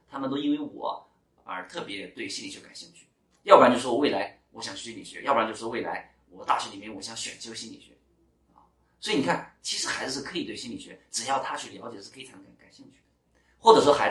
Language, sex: Chinese, male